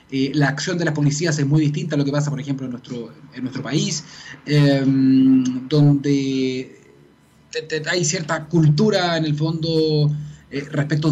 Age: 20-39